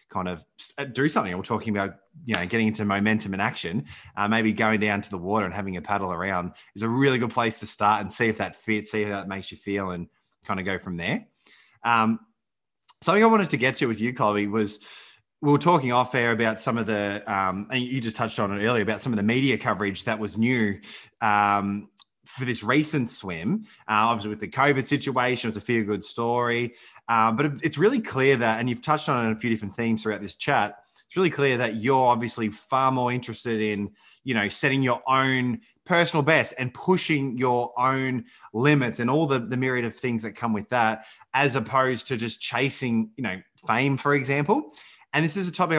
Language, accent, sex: English, Australian, male